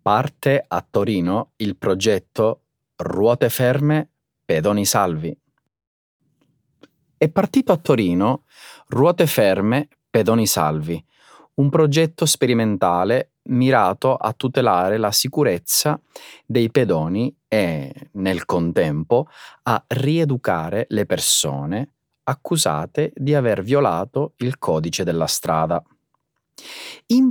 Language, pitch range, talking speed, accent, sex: Italian, 95-145 Hz, 95 wpm, native, male